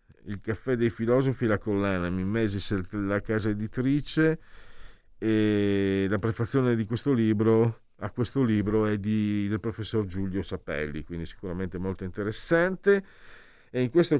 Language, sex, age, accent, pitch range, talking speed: Italian, male, 50-69, native, 85-110 Hz, 135 wpm